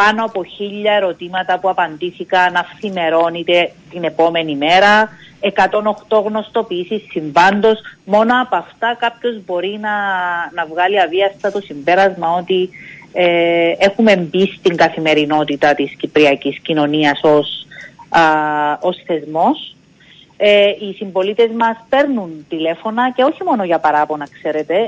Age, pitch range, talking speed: 30-49, 165-220 Hz, 120 wpm